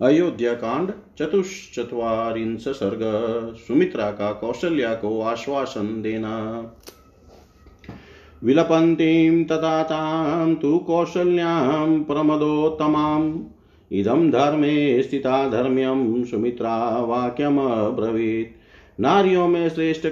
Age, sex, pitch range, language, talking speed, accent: 40-59, male, 125-165 Hz, Hindi, 65 wpm, native